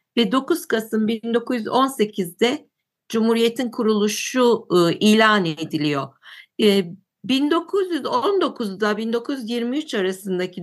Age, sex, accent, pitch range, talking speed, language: 50-69, female, native, 195-265 Hz, 60 wpm, Turkish